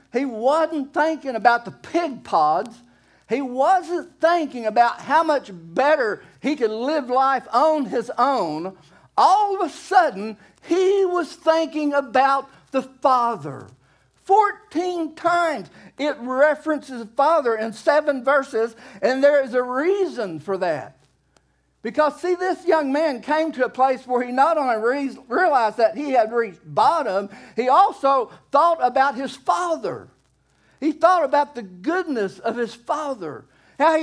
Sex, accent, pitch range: male, American, 235-320 Hz